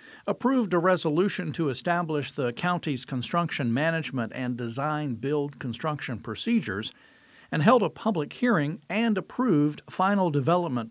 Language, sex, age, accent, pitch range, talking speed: English, male, 50-69, American, 145-200 Hz, 120 wpm